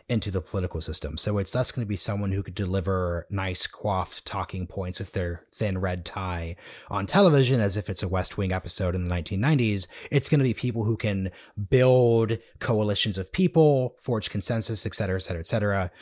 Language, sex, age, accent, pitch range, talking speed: English, male, 30-49, American, 95-120 Hz, 200 wpm